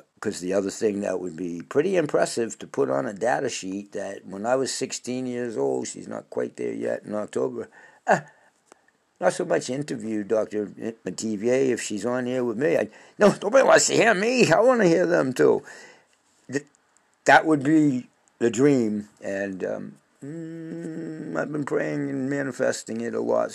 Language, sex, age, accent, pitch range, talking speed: English, male, 60-79, American, 110-165 Hz, 180 wpm